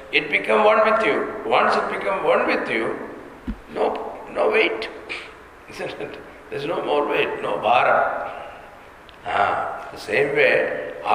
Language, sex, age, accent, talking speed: English, male, 50-69, Indian, 145 wpm